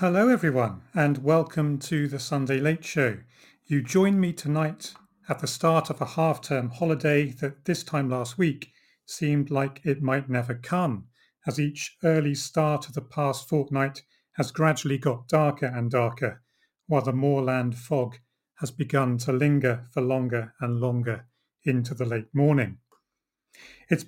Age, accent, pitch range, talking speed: 40-59, British, 130-155 Hz, 155 wpm